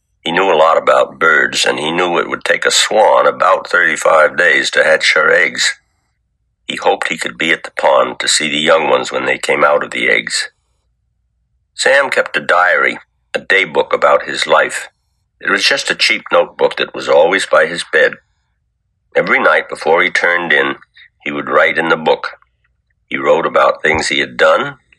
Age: 60-79